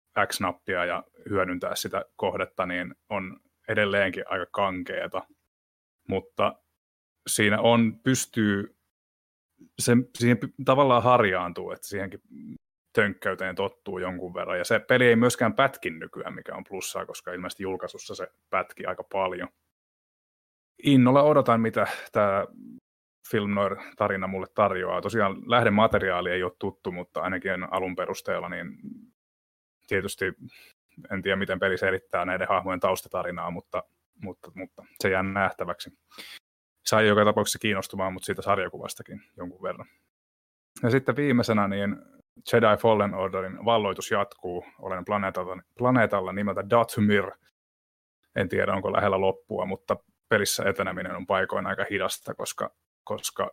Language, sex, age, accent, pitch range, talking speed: Finnish, male, 30-49, native, 90-115 Hz, 125 wpm